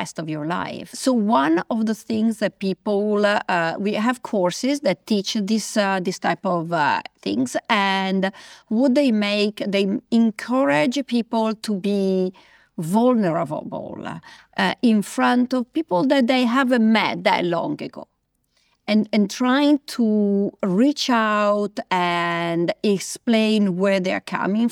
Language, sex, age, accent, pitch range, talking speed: English, female, 40-59, Italian, 190-245 Hz, 140 wpm